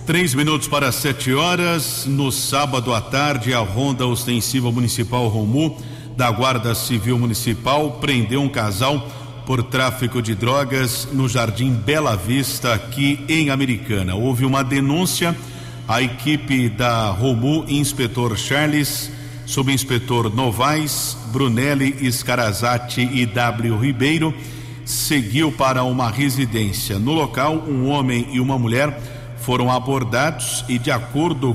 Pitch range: 120-140 Hz